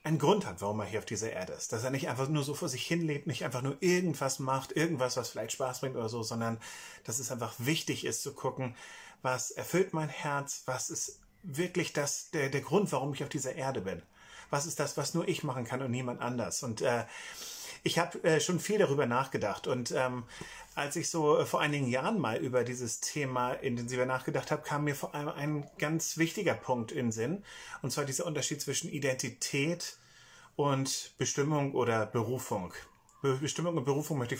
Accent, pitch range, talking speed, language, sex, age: German, 130-170 Hz, 210 wpm, German, male, 30-49